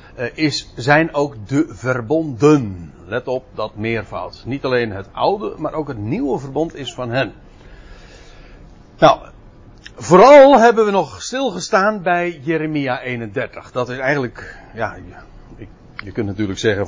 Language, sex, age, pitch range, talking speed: Dutch, male, 60-79, 110-160 Hz, 140 wpm